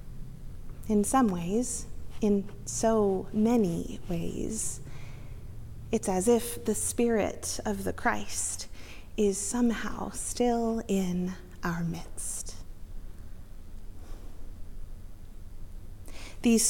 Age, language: 40-59, English